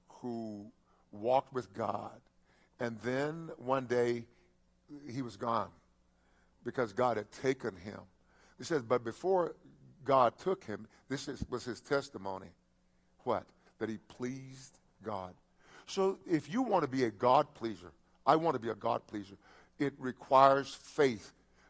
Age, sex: 50-69, male